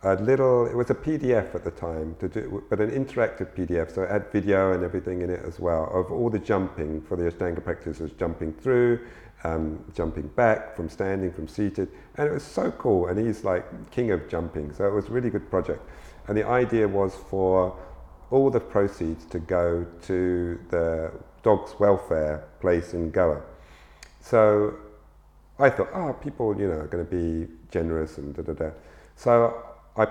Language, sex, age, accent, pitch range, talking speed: English, male, 50-69, British, 85-115 Hz, 185 wpm